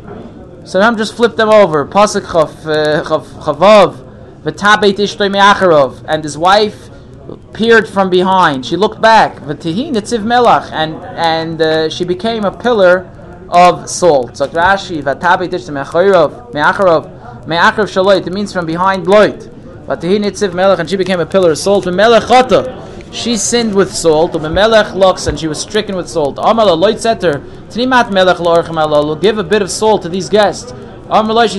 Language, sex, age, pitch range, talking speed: English, male, 20-39, 165-205 Hz, 130 wpm